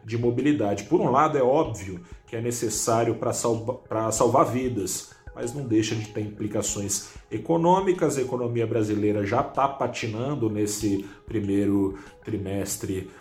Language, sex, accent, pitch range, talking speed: Portuguese, male, Brazilian, 105-130 Hz, 130 wpm